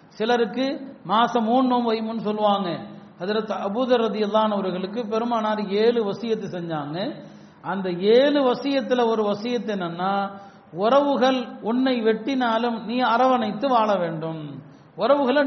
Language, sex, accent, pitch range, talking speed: Tamil, male, native, 195-240 Hz, 45 wpm